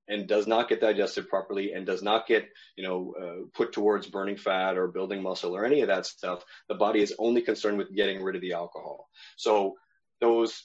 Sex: male